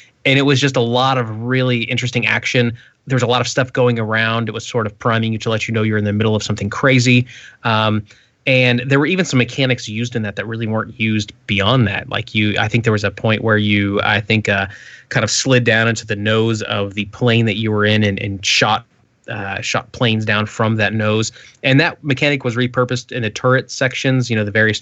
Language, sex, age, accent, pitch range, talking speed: English, male, 20-39, American, 110-125 Hz, 245 wpm